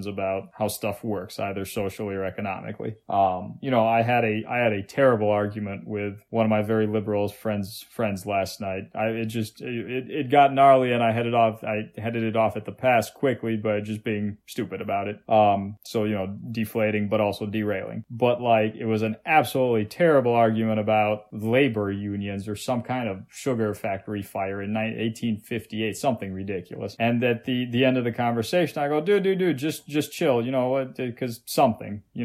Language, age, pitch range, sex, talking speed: English, 20-39, 105-130 Hz, male, 195 wpm